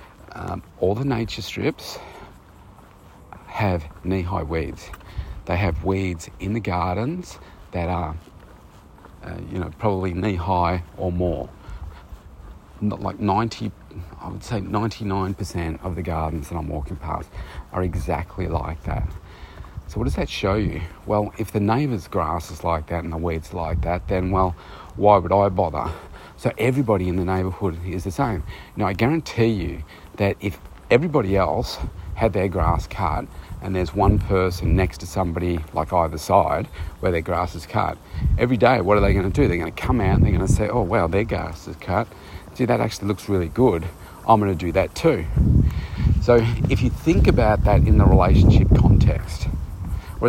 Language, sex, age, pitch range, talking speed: English, male, 40-59, 85-105 Hz, 180 wpm